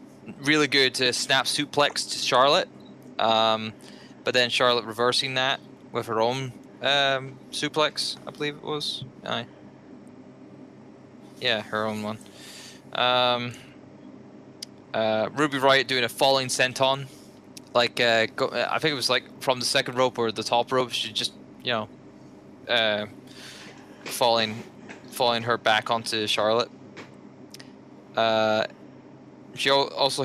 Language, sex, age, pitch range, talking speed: English, male, 20-39, 110-135 Hz, 125 wpm